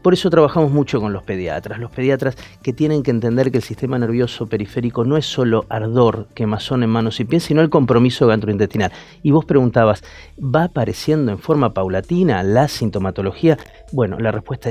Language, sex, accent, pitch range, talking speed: Spanish, male, Argentinian, 110-150 Hz, 180 wpm